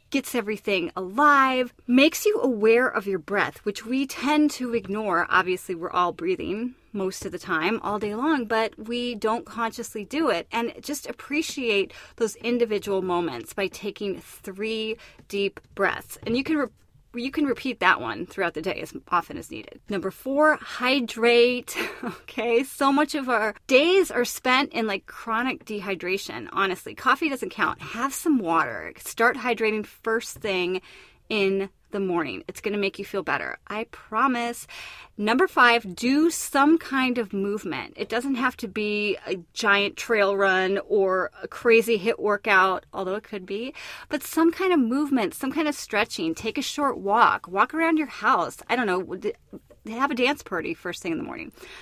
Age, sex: 30-49, female